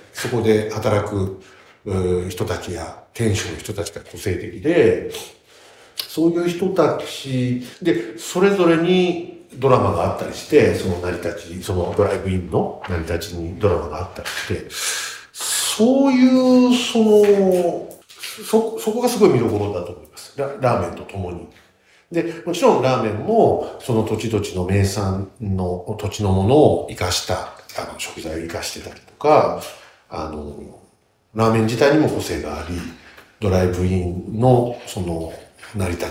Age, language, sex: 50-69, Japanese, male